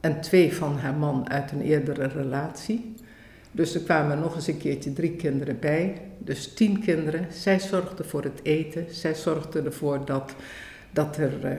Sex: female